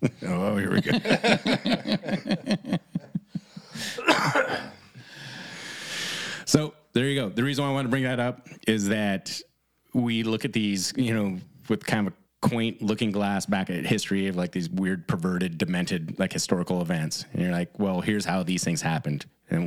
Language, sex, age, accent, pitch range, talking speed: English, male, 30-49, American, 90-125 Hz, 165 wpm